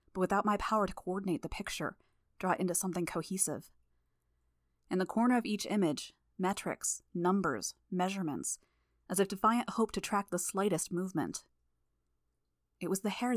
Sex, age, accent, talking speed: female, 30-49, American, 155 wpm